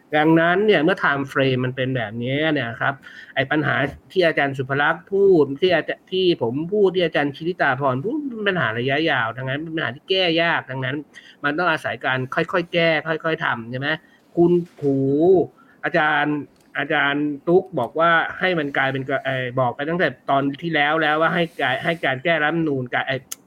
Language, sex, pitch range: Thai, male, 130-170 Hz